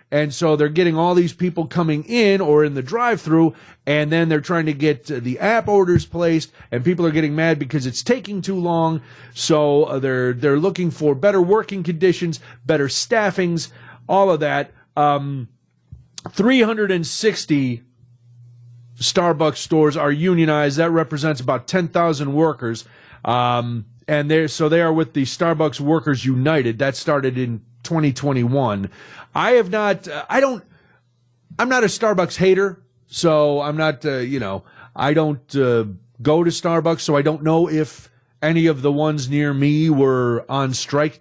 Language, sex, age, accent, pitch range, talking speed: English, male, 40-59, American, 135-175 Hz, 165 wpm